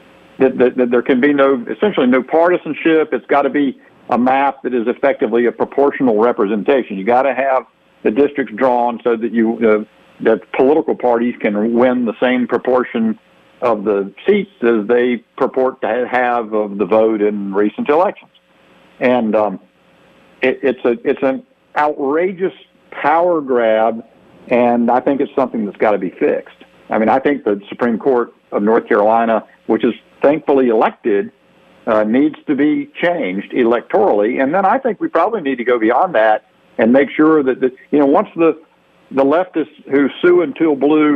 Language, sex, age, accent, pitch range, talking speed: English, male, 50-69, American, 115-145 Hz, 175 wpm